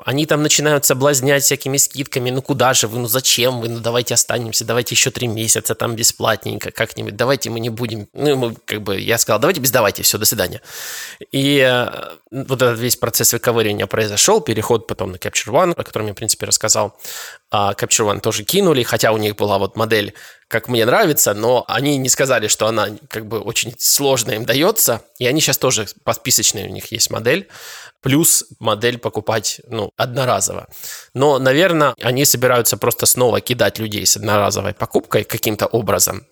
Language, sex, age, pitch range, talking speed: Russian, male, 20-39, 110-135 Hz, 180 wpm